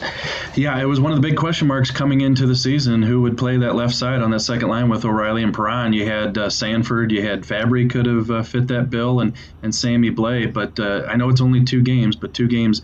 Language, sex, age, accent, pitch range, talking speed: English, male, 30-49, American, 110-125 Hz, 255 wpm